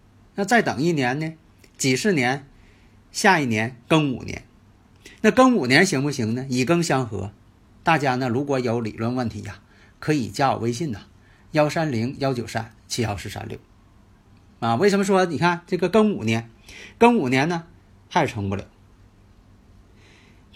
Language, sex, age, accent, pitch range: Chinese, male, 50-69, native, 105-150 Hz